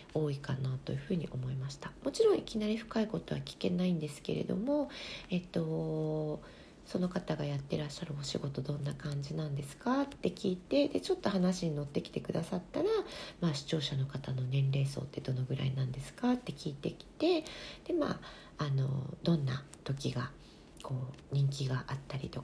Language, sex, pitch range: Japanese, female, 140-190 Hz